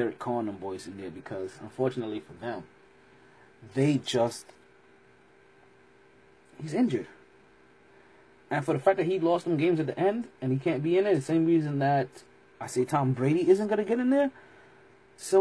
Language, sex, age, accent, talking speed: English, male, 30-49, American, 180 wpm